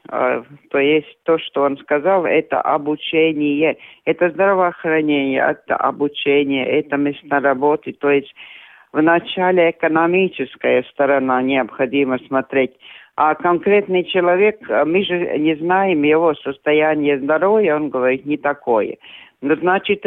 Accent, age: native, 50-69